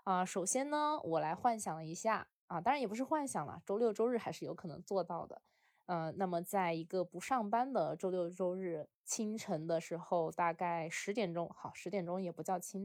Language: Chinese